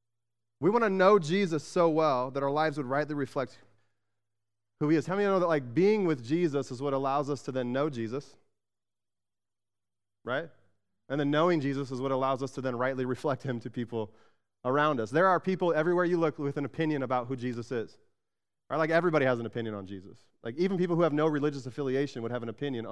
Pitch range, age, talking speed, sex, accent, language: 125-170 Hz, 30-49, 225 wpm, male, American, English